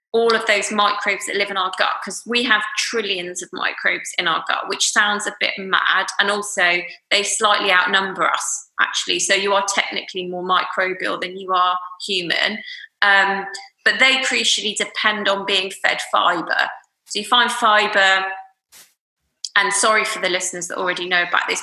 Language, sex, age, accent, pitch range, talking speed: English, female, 20-39, British, 190-215 Hz, 175 wpm